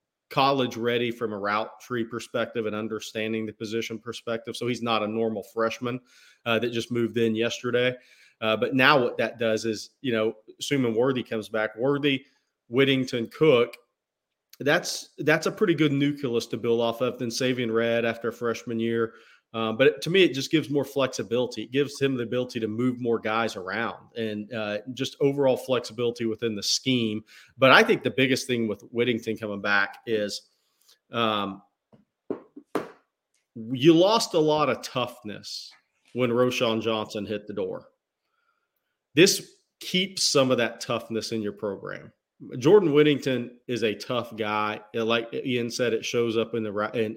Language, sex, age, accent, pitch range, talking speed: English, male, 40-59, American, 110-130 Hz, 170 wpm